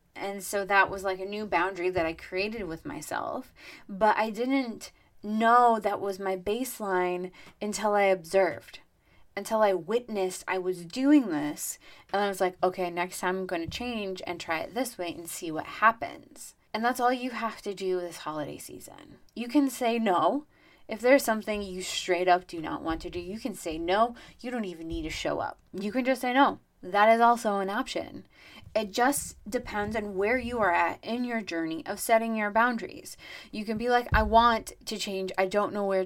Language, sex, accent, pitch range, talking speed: English, female, American, 185-230 Hz, 205 wpm